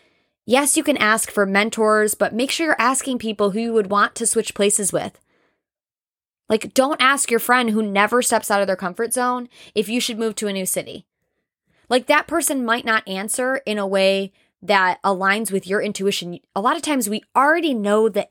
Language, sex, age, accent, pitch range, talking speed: English, female, 20-39, American, 195-240 Hz, 205 wpm